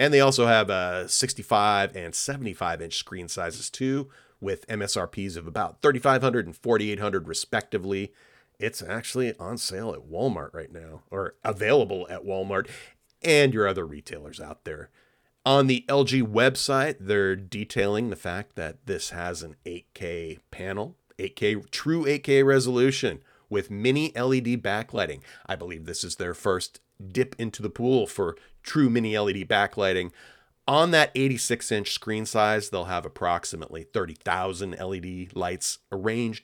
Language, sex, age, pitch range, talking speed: English, male, 30-49, 95-130 Hz, 140 wpm